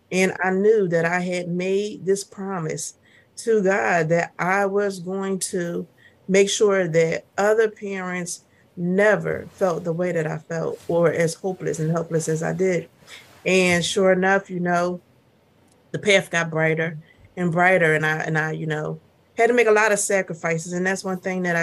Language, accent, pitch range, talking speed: English, American, 165-200 Hz, 180 wpm